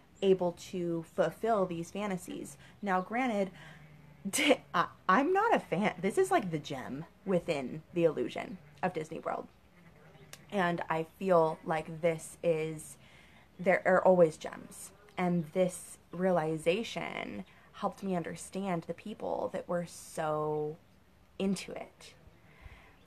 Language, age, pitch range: English, 20-39, 160-185 Hz